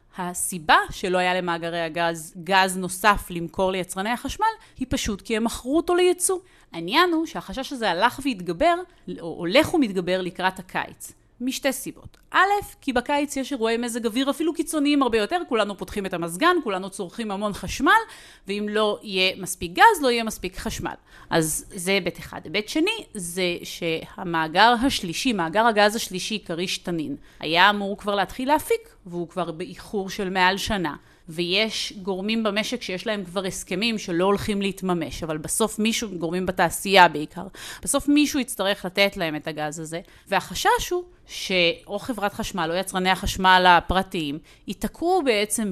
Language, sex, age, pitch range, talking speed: Hebrew, female, 30-49, 175-230 Hz, 155 wpm